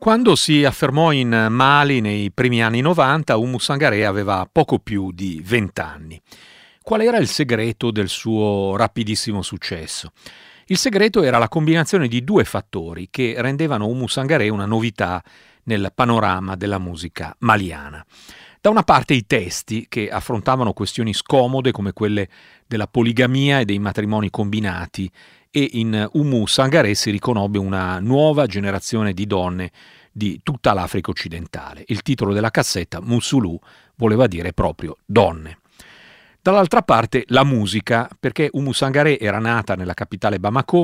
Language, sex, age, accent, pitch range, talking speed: Italian, male, 40-59, native, 100-130 Hz, 145 wpm